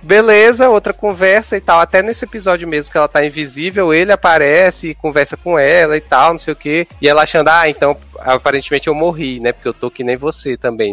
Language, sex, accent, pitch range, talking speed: Portuguese, male, Brazilian, 150-205 Hz, 225 wpm